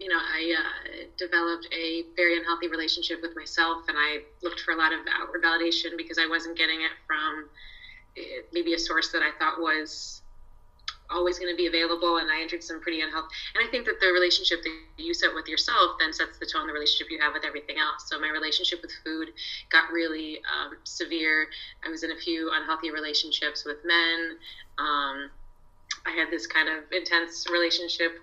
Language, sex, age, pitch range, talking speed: English, female, 20-39, 155-175 Hz, 195 wpm